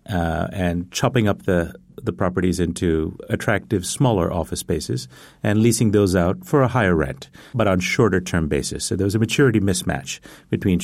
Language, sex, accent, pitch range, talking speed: English, male, American, 90-110 Hz, 170 wpm